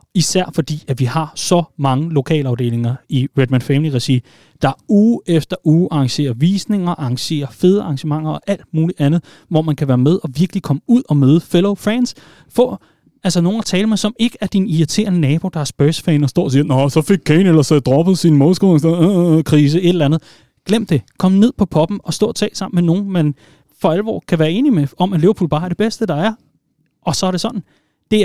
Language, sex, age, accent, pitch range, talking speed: Danish, male, 30-49, native, 145-185 Hz, 220 wpm